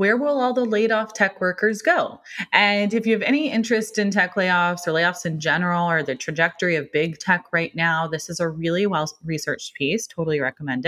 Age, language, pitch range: 20-39, English, 160-220 Hz